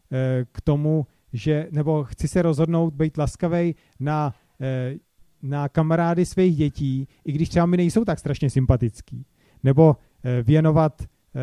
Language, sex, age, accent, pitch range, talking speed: Czech, male, 40-59, native, 125-165 Hz, 125 wpm